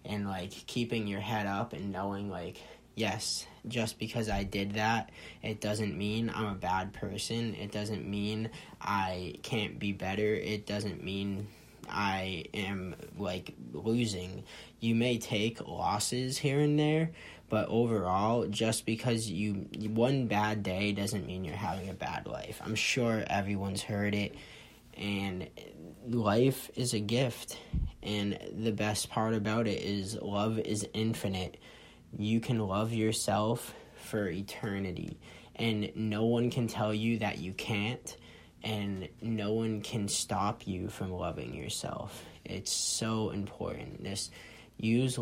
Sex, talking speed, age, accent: male, 140 wpm, 10-29, American